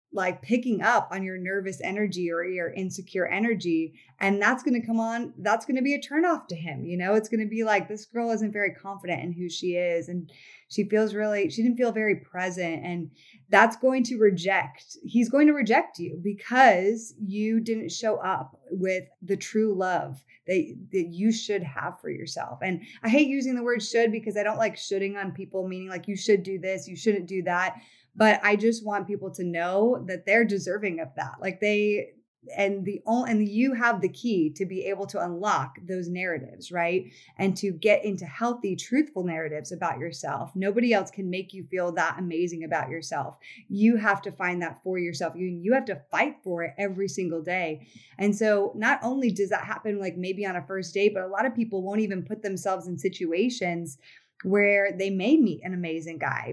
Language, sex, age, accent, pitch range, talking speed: English, female, 20-39, American, 180-220 Hz, 210 wpm